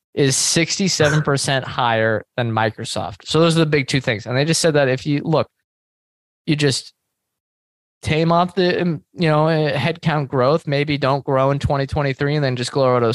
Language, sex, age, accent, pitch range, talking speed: English, male, 20-39, American, 115-140 Hz, 185 wpm